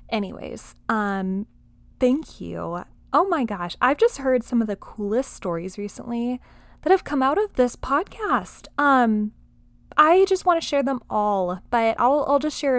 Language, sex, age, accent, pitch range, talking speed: English, female, 20-39, American, 215-270 Hz, 170 wpm